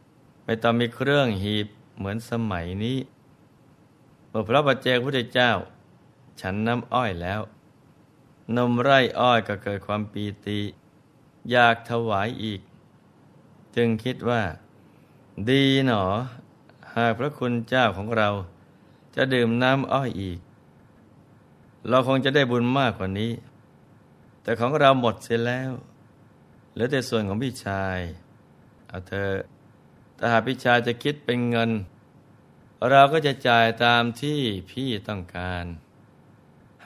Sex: male